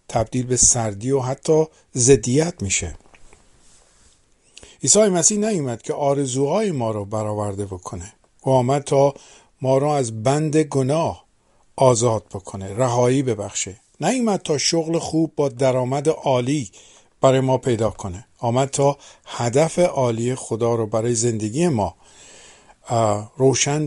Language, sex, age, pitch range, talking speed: Persian, male, 50-69, 110-140 Hz, 125 wpm